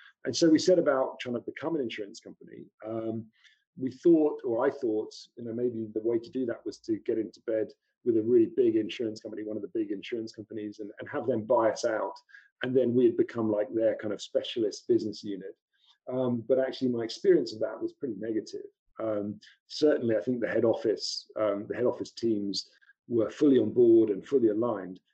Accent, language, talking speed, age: British, English, 210 wpm, 40-59